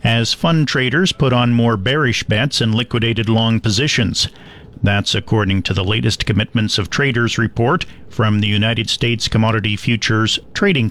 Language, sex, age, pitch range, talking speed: English, male, 50-69, 105-125 Hz, 155 wpm